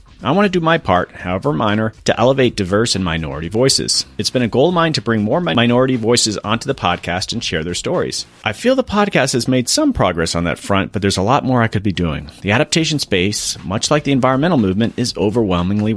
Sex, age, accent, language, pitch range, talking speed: male, 40-59, American, English, 95-130 Hz, 235 wpm